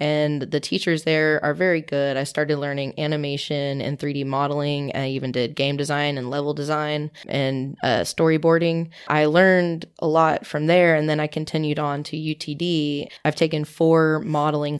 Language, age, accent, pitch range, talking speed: English, 20-39, American, 145-160 Hz, 170 wpm